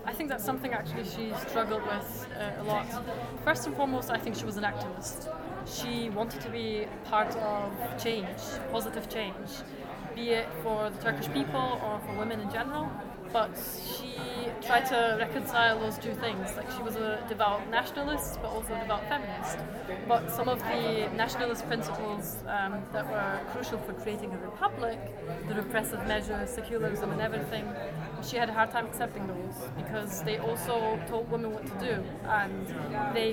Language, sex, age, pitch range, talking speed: English, female, 20-39, 210-240 Hz, 175 wpm